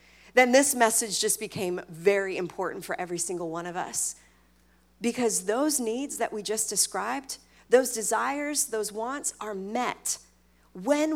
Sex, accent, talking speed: female, American, 145 wpm